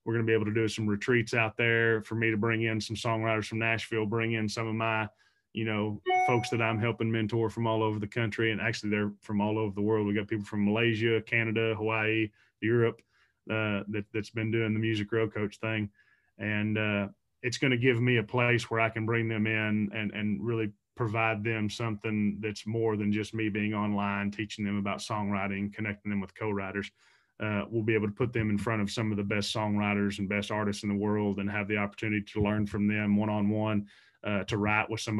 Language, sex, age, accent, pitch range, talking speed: English, male, 20-39, American, 105-115 Hz, 225 wpm